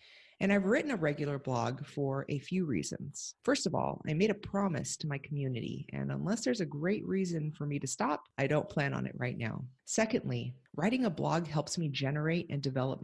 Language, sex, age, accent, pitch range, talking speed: English, female, 30-49, American, 135-175 Hz, 210 wpm